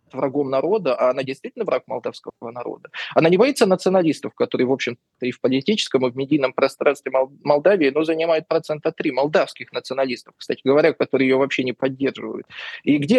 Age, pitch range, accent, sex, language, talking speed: 20-39, 145-205 Hz, native, male, Russian, 175 wpm